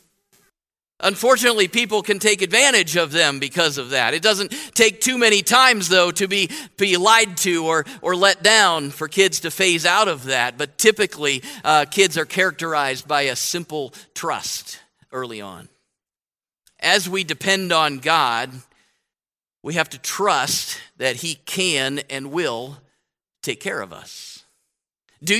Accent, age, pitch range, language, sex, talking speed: American, 50-69, 155-220 Hz, English, male, 150 wpm